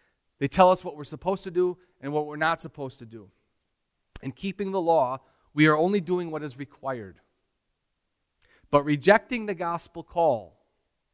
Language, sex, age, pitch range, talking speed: English, male, 40-59, 135-180 Hz, 165 wpm